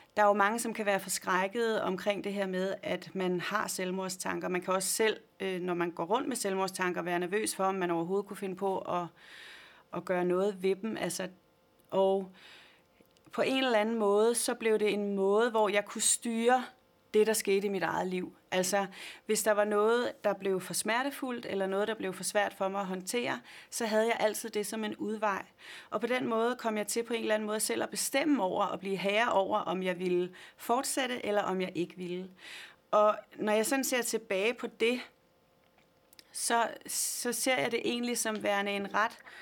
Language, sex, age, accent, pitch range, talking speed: Danish, female, 30-49, native, 185-220 Hz, 210 wpm